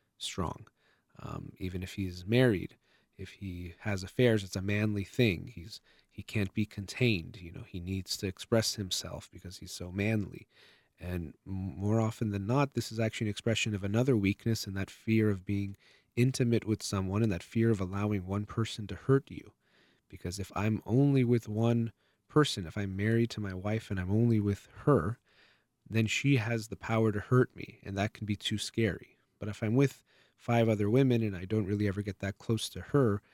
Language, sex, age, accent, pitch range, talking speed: English, male, 30-49, American, 100-120 Hz, 200 wpm